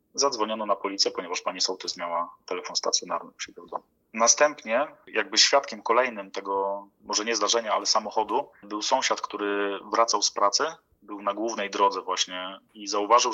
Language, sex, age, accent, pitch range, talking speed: Polish, male, 30-49, native, 100-120 Hz, 150 wpm